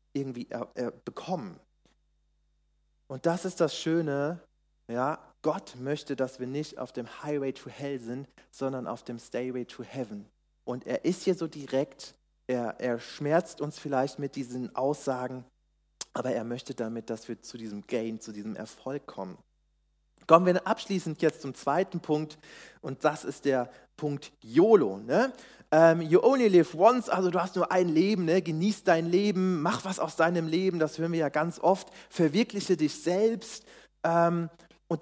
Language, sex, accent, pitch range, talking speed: German, male, German, 130-185 Hz, 165 wpm